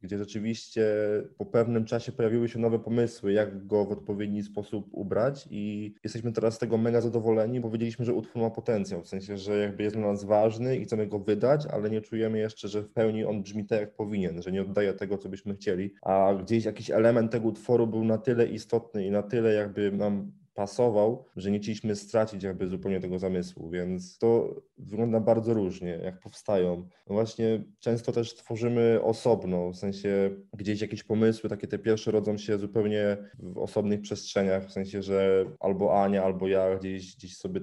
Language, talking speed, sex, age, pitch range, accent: Polish, 190 wpm, male, 20-39, 95-110 Hz, native